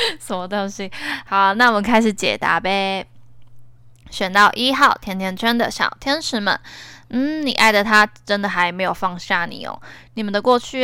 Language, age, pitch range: Chinese, 10-29, 185-225 Hz